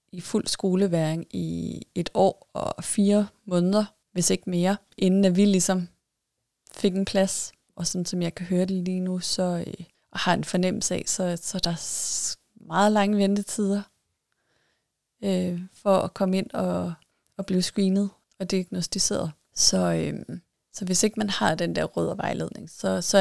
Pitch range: 175-200 Hz